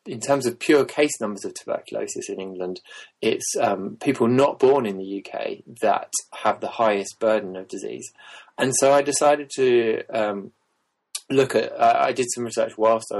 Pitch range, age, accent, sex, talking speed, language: 100-120 Hz, 20-39, British, male, 175 wpm, English